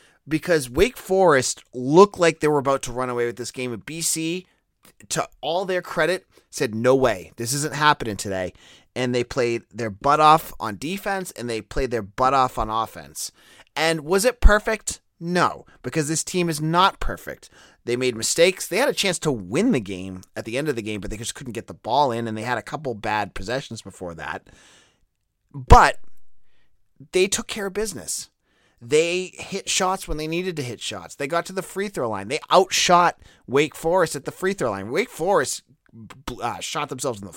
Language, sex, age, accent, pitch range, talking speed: English, male, 30-49, American, 115-175 Hz, 200 wpm